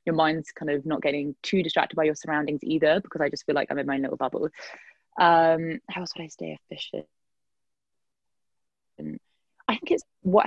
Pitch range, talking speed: 145-170 Hz, 190 wpm